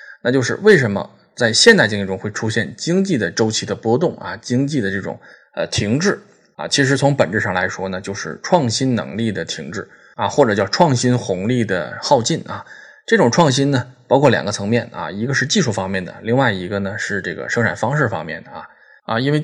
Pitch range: 105-140 Hz